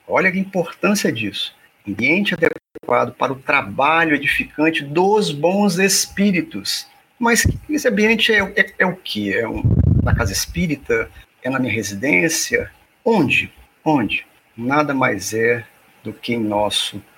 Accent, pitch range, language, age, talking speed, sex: Brazilian, 130-170 Hz, Portuguese, 50-69, 135 wpm, male